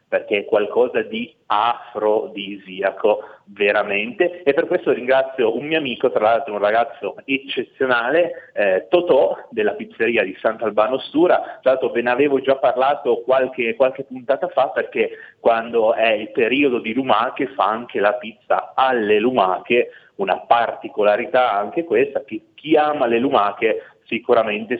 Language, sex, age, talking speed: Italian, male, 30-49, 145 wpm